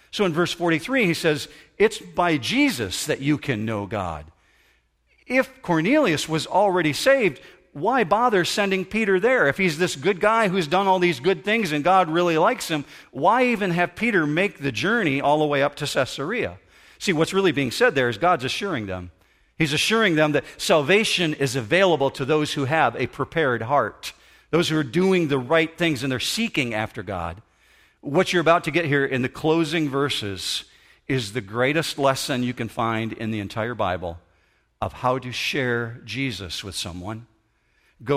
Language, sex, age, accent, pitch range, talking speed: English, male, 50-69, American, 130-180 Hz, 185 wpm